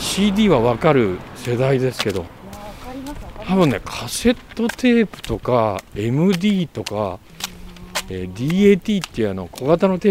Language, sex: Japanese, male